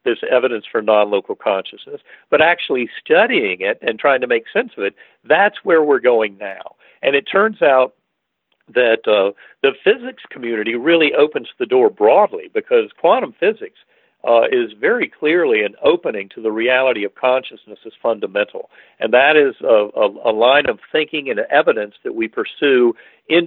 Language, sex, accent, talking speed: English, male, American, 165 wpm